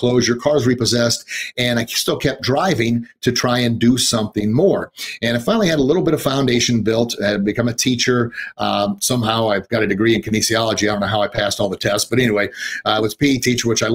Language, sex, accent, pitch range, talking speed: English, male, American, 115-140 Hz, 235 wpm